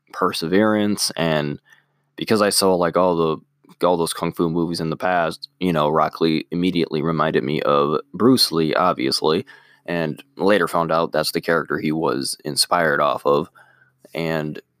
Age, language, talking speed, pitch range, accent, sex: 20-39, English, 160 wpm, 80-100 Hz, American, male